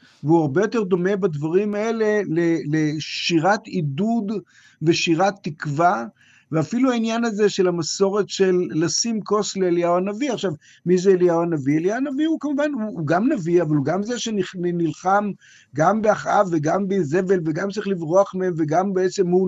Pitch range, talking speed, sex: 165-210 Hz, 150 wpm, male